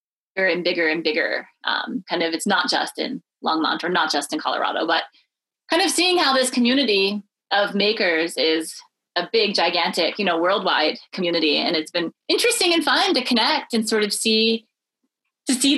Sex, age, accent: female, 20-39, American